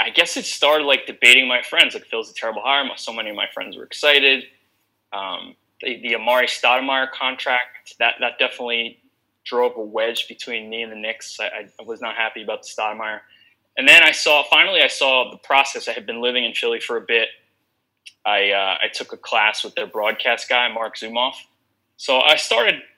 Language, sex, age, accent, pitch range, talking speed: English, male, 20-39, American, 120-145 Hz, 205 wpm